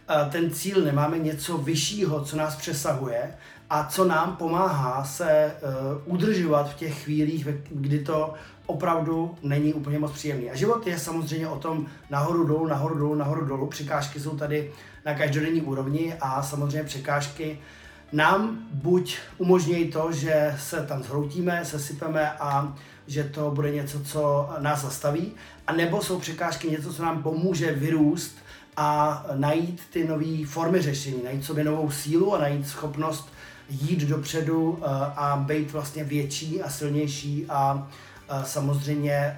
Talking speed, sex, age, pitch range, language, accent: 140 wpm, male, 30-49, 145-165 Hz, Czech, native